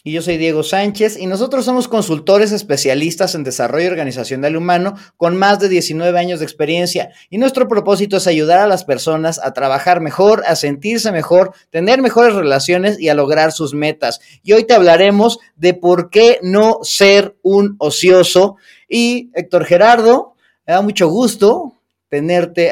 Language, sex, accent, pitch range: Spanish, male, Mexican, 155-200 Hz